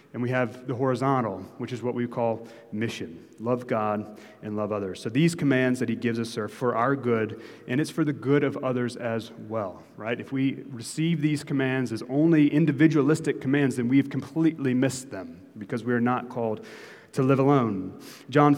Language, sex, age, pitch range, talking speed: English, male, 30-49, 120-155 Hz, 190 wpm